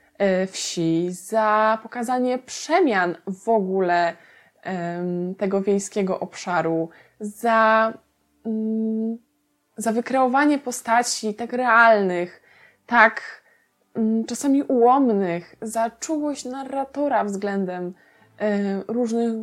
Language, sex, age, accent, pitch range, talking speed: Polish, female, 20-39, native, 190-245 Hz, 70 wpm